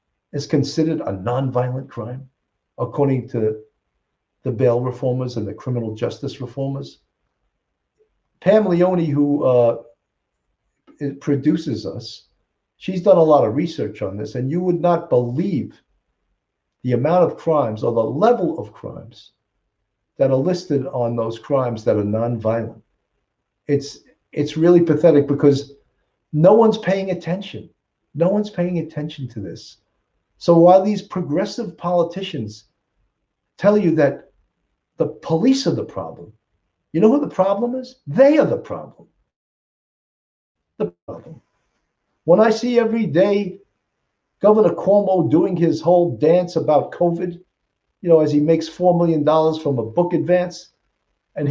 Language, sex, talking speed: English, male, 135 wpm